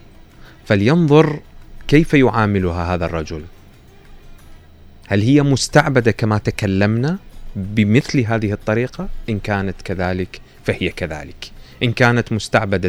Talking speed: 100 wpm